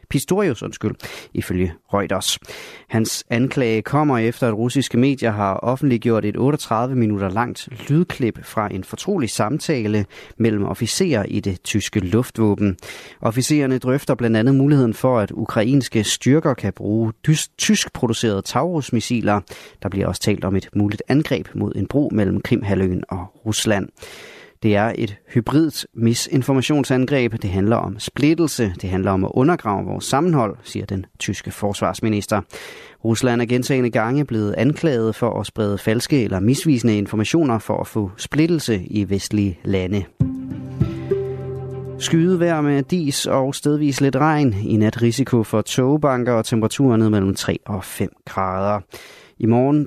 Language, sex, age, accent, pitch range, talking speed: Danish, male, 30-49, native, 105-135 Hz, 140 wpm